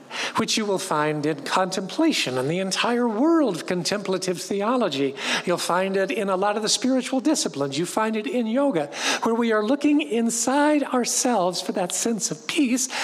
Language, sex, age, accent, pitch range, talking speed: English, male, 50-69, American, 185-270 Hz, 180 wpm